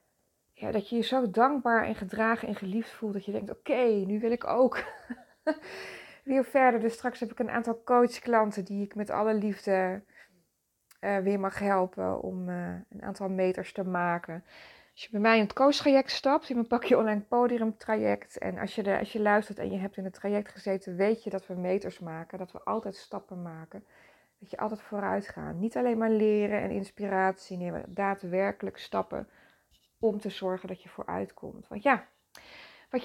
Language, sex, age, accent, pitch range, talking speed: Dutch, female, 20-39, Dutch, 190-240 Hz, 195 wpm